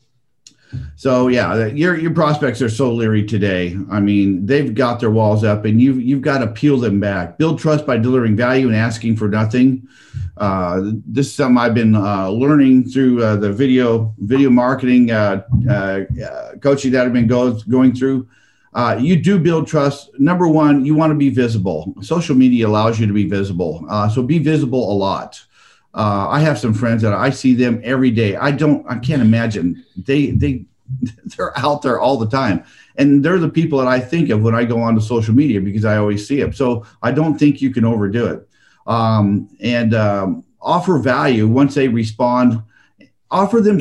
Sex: male